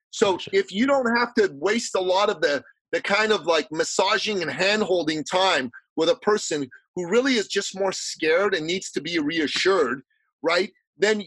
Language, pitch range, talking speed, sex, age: English, 190-260 Hz, 185 wpm, male, 40-59